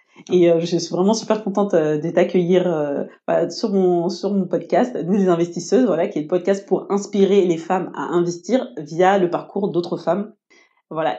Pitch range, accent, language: 175-210 Hz, French, French